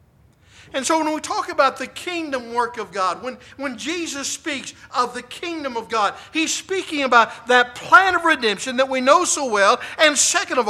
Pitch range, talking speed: 210-285 Hz, 195 wpm